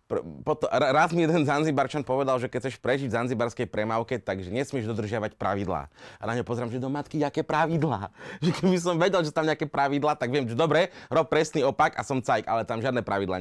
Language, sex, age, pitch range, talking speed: Slovak, male, 30-49, 110-145 Hz, 215 wpm